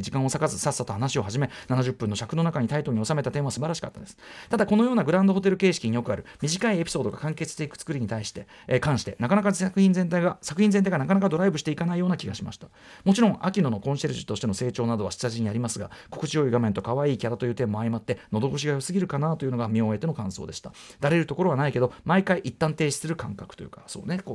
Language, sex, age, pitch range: Japanese, male, 40-59, 115-185 Hz